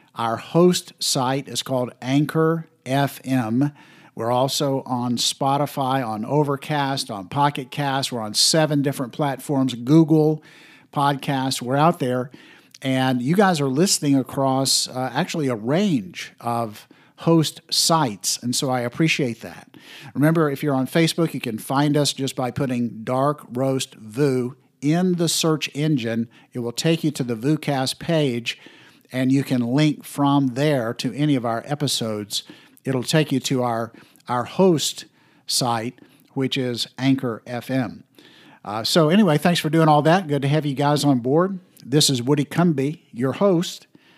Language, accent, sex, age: English, American, male, 50-69